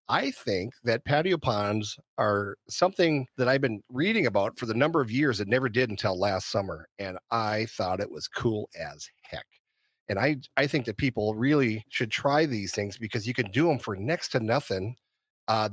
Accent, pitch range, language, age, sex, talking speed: American, 110-135 Hz, English, 40-59, male, 200 wpm